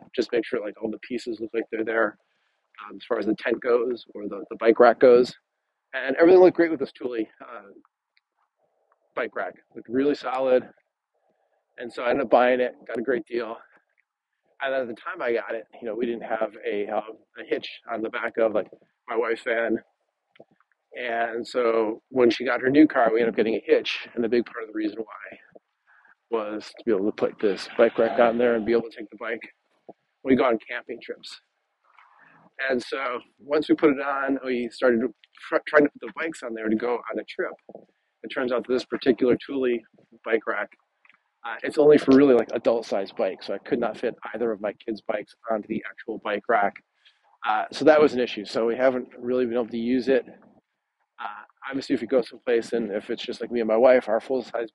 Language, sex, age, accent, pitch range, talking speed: English, male, 40-59, American, 115-135 Hz, 225 wpm